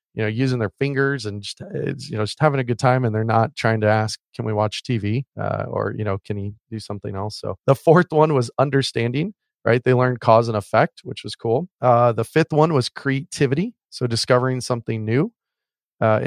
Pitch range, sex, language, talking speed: 110-135 Hz, male, English, 220 wpm